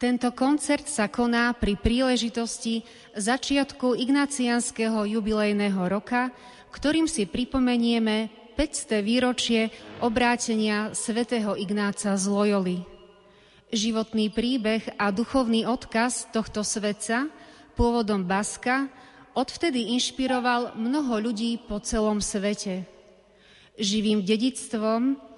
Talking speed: 90 wpm